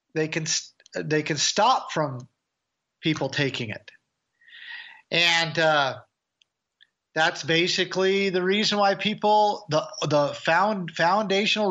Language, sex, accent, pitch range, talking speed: English, male, American, 155-185 Hz, 110 wpm